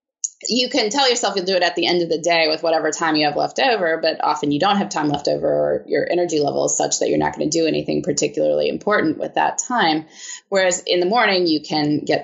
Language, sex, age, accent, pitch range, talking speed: English, female, 20-39, American, 155-210 Hz, 260 wpm